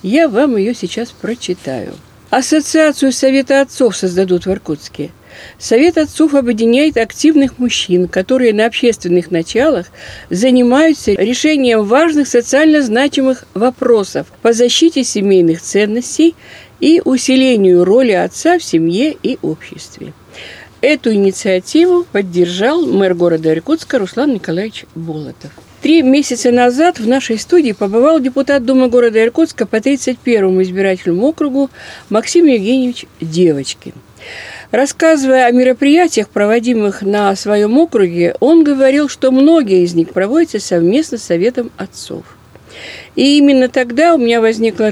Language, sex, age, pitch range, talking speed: Russian, female, 50-69, 195-285 Hz, 120 wpm